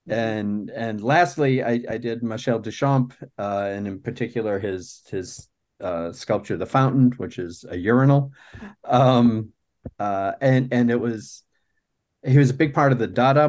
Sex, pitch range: male, 100-120 Hz